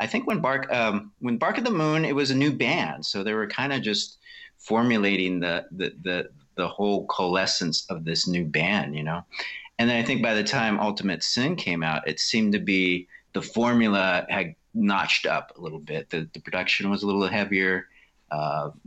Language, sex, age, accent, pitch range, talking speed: English, male, 40-59, American, 90-115 Hz, 205 wpm